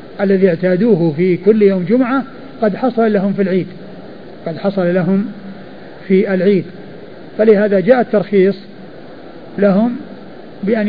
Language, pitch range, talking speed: Arabic, 180-220 Hz, 115 wpm